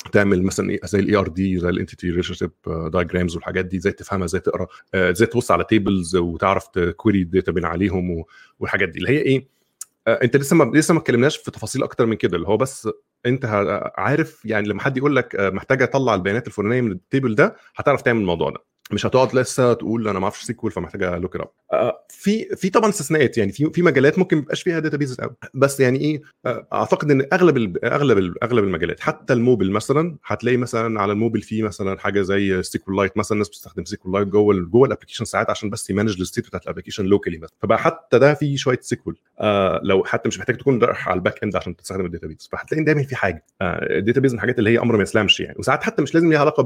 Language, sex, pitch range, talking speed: Arabic, male, 95-130 Hz, 220 wpm